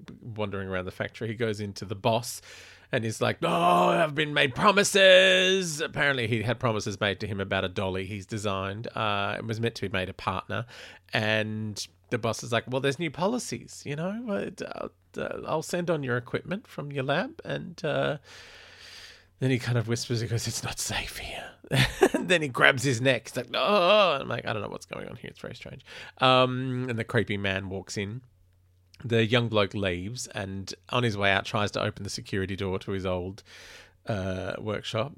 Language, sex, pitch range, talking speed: English, male, 105-160 Hz, 195 wpm